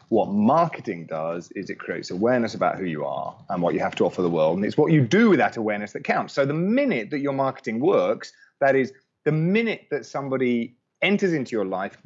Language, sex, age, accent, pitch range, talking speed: English, male, 30-49, British, 115-165 Hz, 230 wpm